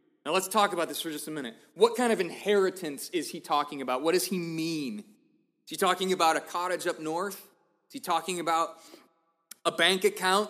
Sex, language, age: male, English, 20-39